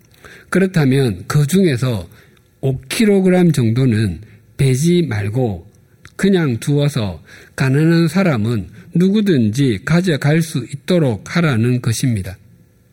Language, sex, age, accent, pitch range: Korean, male, 50-69, native, 115-160 Hz